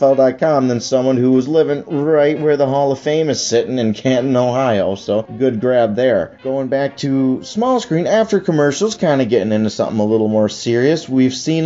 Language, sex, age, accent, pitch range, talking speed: English, male, 30-49, American, 115-155 Hz, 195 wpm